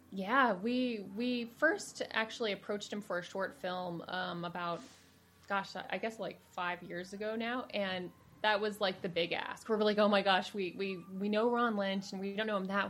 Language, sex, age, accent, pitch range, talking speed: English, female, 20-39, American, 185-220 Hz, 215 wpm